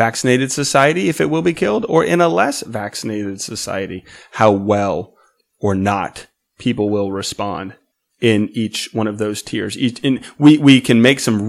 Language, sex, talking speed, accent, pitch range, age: English, male, 160 wpm, American, 110-135 Hz, 30-49